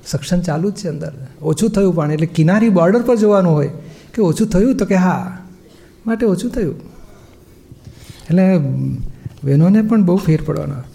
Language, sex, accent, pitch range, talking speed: Gujarati, male, native, 150-200 Hz, 160 wpm